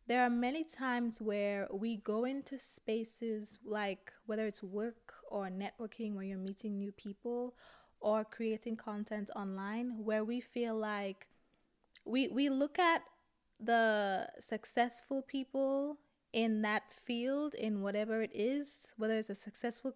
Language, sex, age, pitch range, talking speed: English, female, 20-39, 210-245 Hz, 140 wpm